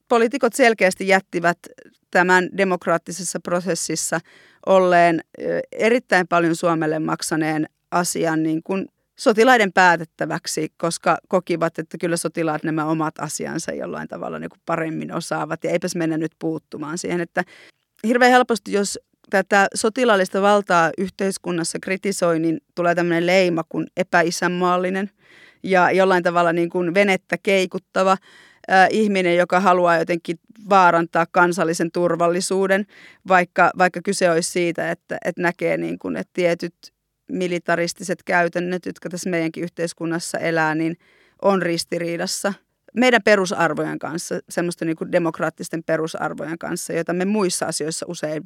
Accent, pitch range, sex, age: native, 165-190 Hz, female, 30-49